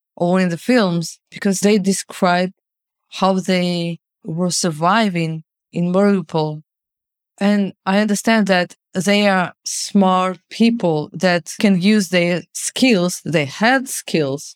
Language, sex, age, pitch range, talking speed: English, female, 20-39, 170-205 Hz, 120 wpm